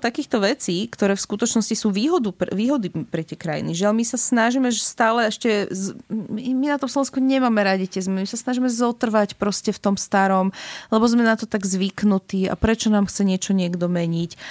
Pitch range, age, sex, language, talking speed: 175-215 Hz, 30-49, female, Slovak, 205 wpm